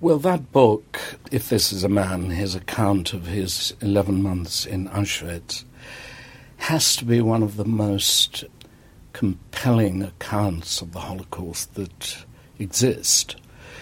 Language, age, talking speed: English, 60-79, 130 wpm